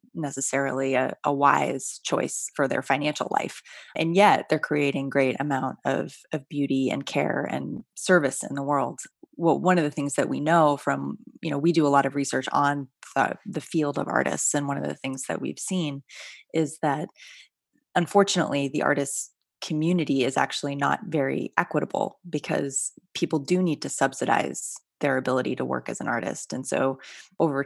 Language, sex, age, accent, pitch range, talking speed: English, female, 20-39, American, 135-165 Hz, 180 wpm